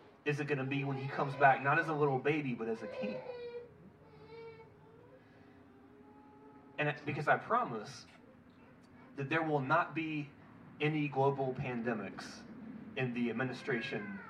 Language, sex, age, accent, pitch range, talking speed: English, male, 30-49, American, 115-150 Hz, 145 wpm